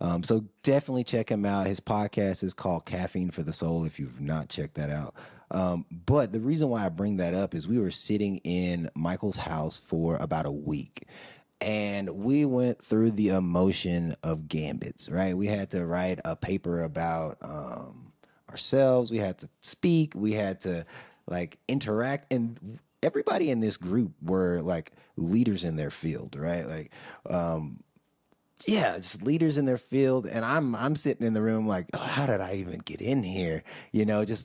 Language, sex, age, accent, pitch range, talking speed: English, male, 30-49, American, 90-115 Hz, 185 wpm